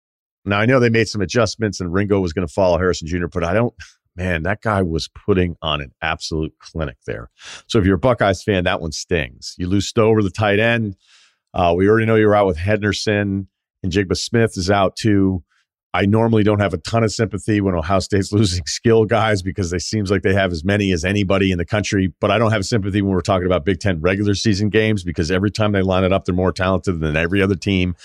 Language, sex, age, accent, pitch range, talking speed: English, male, 40-59, American, 90-115 Hz, 240 wpm